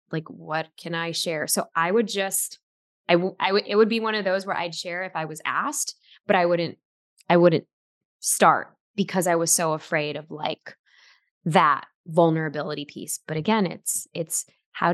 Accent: American